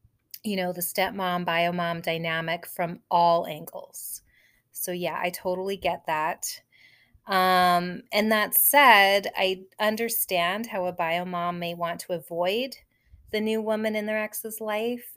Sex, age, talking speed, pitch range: female, 30-49, 145 wpm, 170-210 Hz